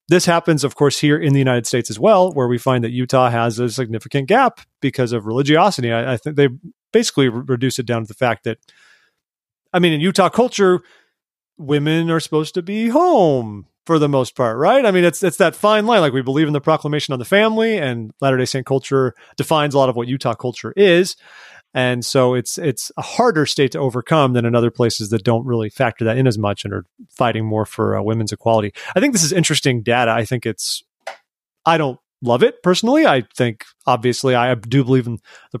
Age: 30-49